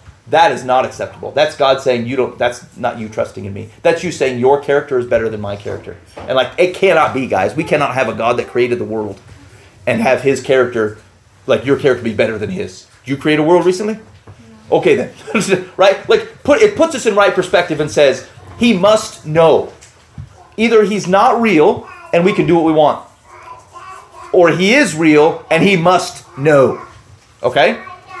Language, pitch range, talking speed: English, 130-210 Hz, 200 wpm